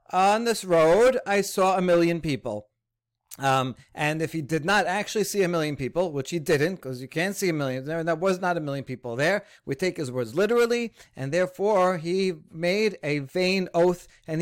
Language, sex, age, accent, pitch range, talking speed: English, male, 40-59, American, 145-195 Hz, 200 wpm